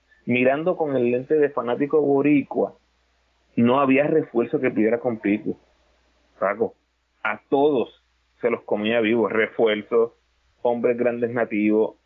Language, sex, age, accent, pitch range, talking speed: Spanish, male, 30-49, Venezuelan, 110-165 Hz, 125 wpm